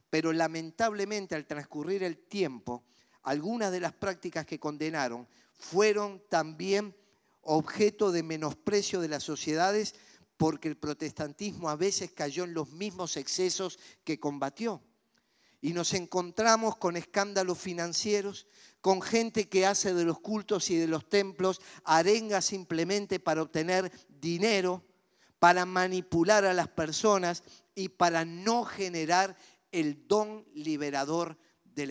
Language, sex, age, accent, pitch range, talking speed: Spanish, male, 50-69, Argentinian, 155-205 Hz, 125 wpm